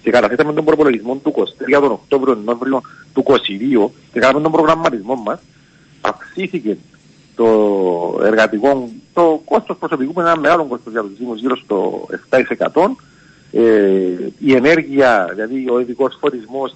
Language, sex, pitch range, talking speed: Greek, male, 130-190 Hz, 130 wpm